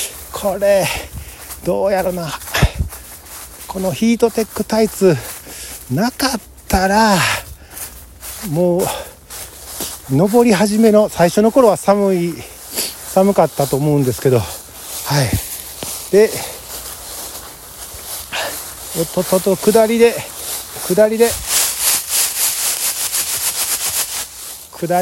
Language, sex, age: Japanese, male, 50-69